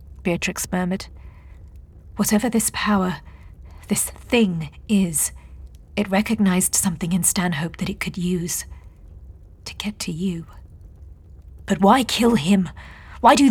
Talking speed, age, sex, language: 120 wpm, 40-59, female, English